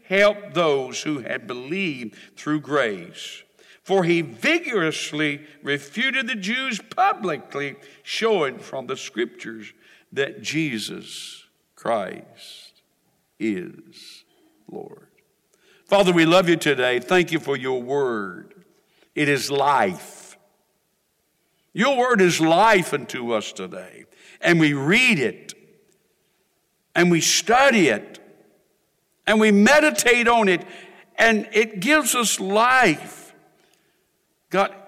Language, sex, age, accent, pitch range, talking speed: English, male, 60-79, American, 160-215 Hz, 105 wpm